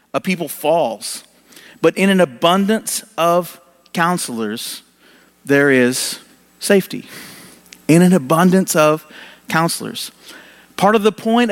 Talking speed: 110 wpm